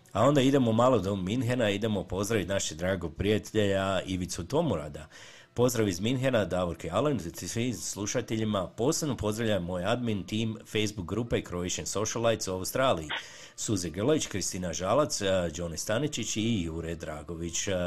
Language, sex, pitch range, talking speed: Croatian, male, 90-110 Hz, 135 wpm